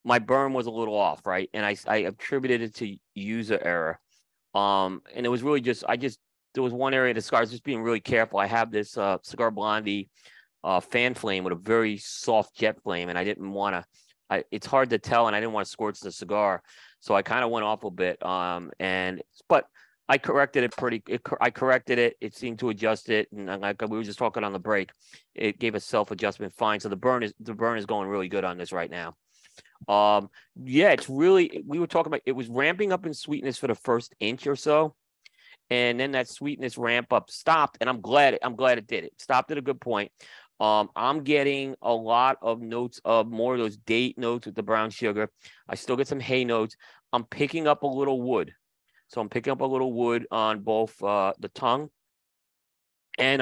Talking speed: 225 wpm